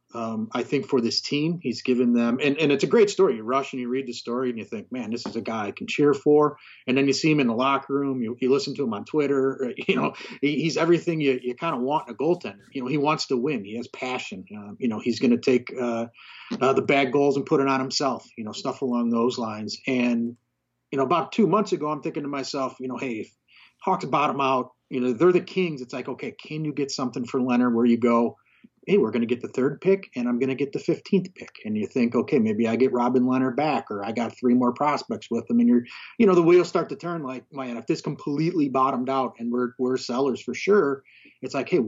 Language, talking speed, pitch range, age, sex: English, 265 wpm, 120-145 Hz, 30-49, male